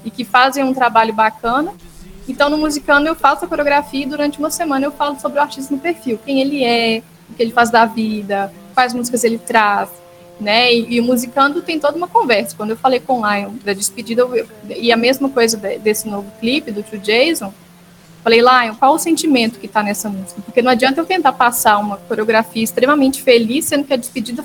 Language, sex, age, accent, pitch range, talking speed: Portuguese, female, 10-29, Brazilian, 215-275 Hz, 220 wpm